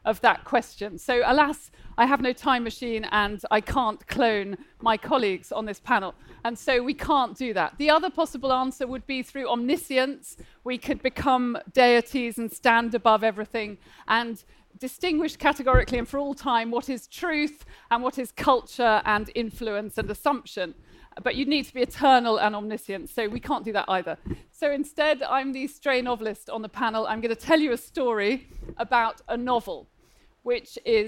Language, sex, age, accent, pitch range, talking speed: English, female, 40-59, British, 225-280 Hz, 180 wpm